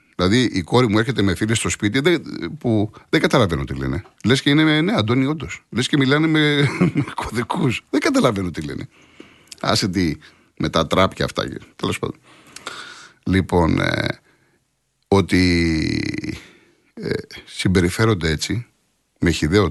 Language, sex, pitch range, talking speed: Greek, male, 90-125 Hz, 130 wpm